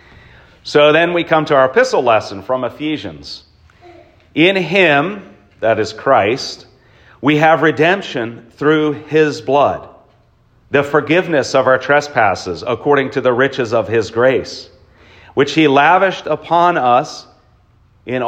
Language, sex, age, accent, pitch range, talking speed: English, male, 40-59, American, 110-150 Hz, 130 wpm